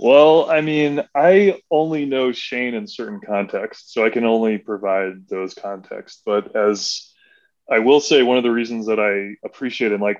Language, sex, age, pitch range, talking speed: English, male, 20-39, 100-130 Hz, 180 wpm